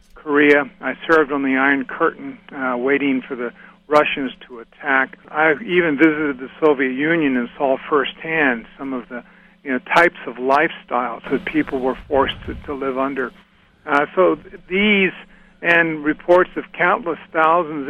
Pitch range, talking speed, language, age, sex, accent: 140-185 Hz, 150 wpm, English, 50-69, male, American